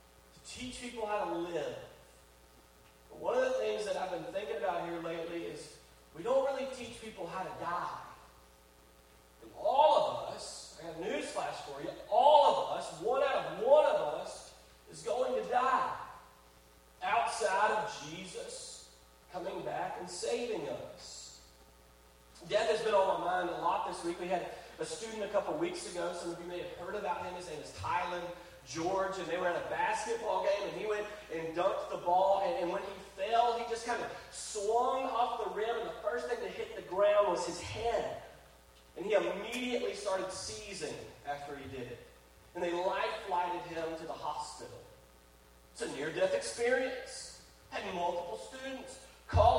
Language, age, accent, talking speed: English, 30-49, American, 185 wpm